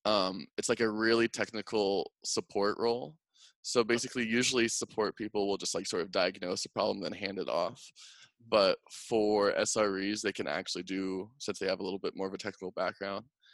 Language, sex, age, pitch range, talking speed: English, male, 20-39, 105-140 Hz, 190 wpm